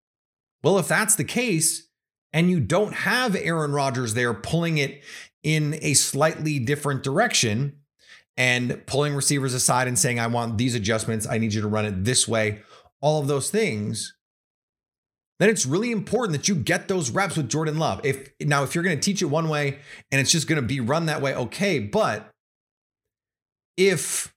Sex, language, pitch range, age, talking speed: male, English, 120-170 Hz, 30-49, 185 wpm